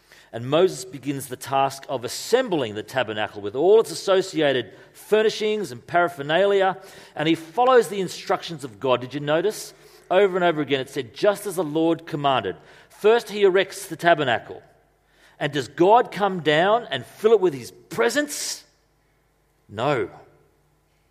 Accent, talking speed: Australian, 155 wpm